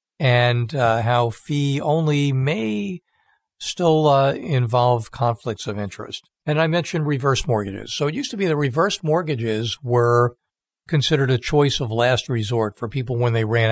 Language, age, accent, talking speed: English, 50-69, American, 160 wpm